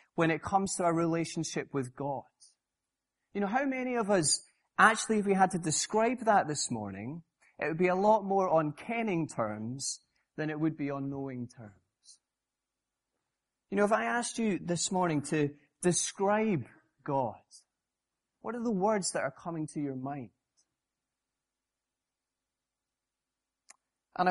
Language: English